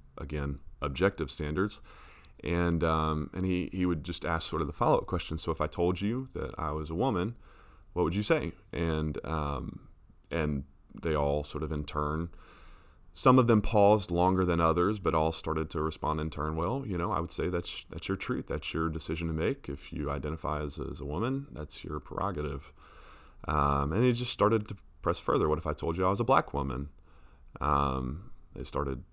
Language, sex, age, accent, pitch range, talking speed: English, male, 30-49, American, 75-90 Hz, 205 wpm